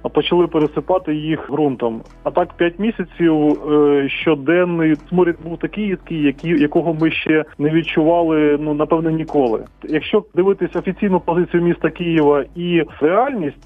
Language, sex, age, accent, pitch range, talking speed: Ukrainian, male, 20-39, native, 145-170 Hz, 130 wpm